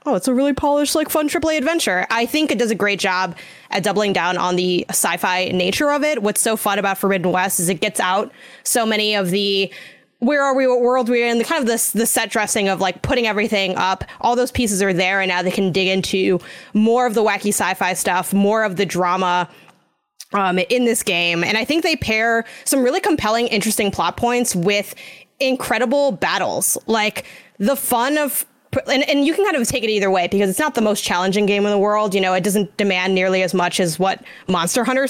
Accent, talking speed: American, 225 wpm